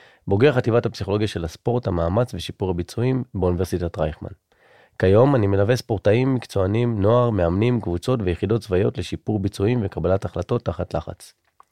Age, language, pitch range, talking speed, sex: 30-49, Hebrew, 95-120 Hz, 135 wpm, male